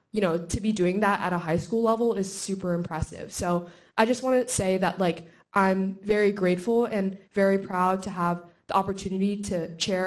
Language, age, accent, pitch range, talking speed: English, 20-39, American, 175-200 Hz, 205 wpm